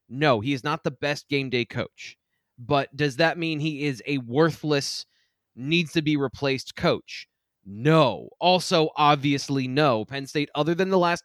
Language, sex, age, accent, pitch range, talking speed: English, male, 20-39, American, 130-180 Hz, 155 wpm